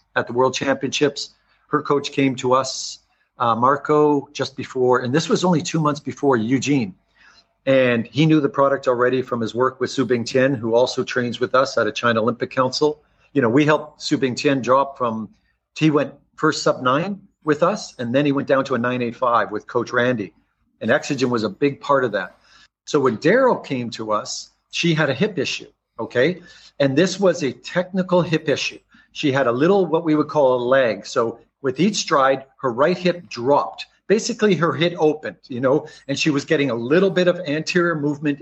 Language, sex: English, male